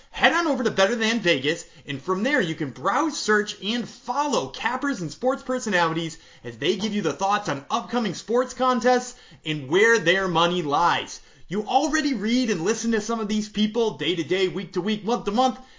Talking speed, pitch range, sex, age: 180 wpm, 165-250 Hz, male, 30-49